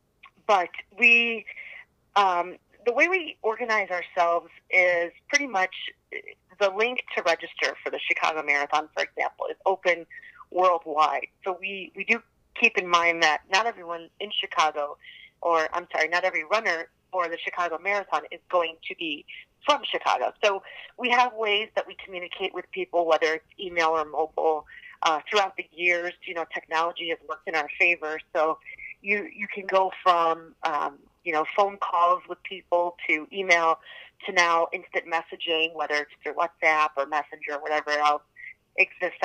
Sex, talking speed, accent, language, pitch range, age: female, 165 wpm, American, English, 165-210 Hz, 30-49